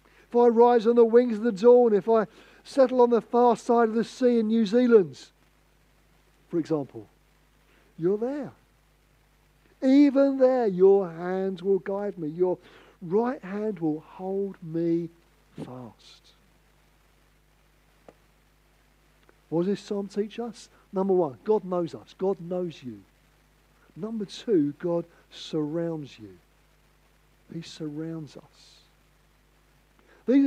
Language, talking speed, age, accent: English, 125 wpm, 50-69, British